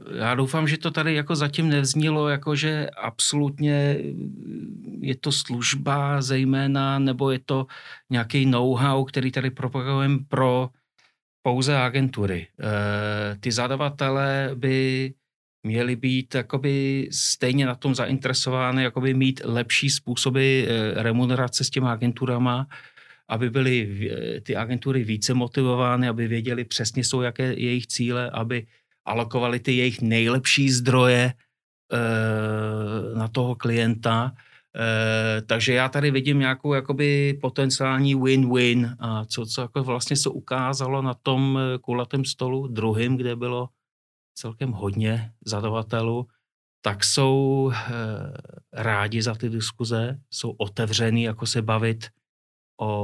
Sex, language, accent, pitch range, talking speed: male, Czech, native, 115-135 Hz, 120 wpm